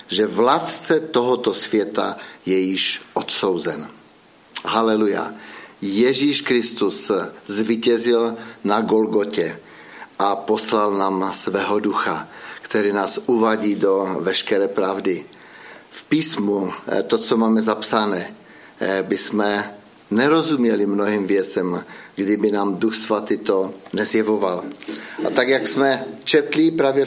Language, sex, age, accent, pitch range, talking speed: Czech, male, 50-69, native, 105-120 Hz, 100 wpm